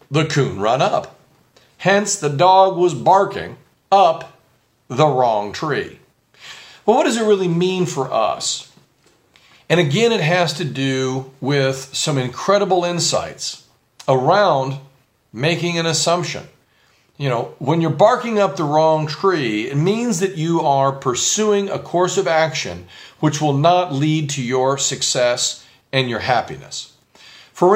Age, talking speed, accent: 40-59, 140 wpm, American